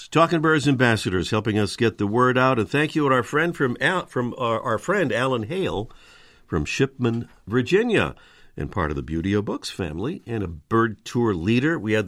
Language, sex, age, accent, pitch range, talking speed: English, male, 50-69, American, 100-140 Hz, 205 wpm